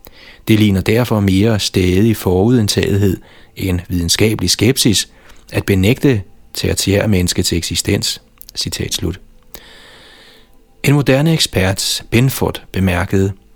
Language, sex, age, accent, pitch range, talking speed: Danish, male, 30-49, native, 95-110 Hz, 90 wpm